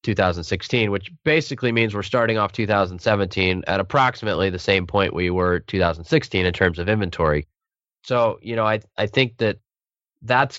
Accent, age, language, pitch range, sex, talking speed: American, 20-39, English, 95-115 Hz, male, 160 wpm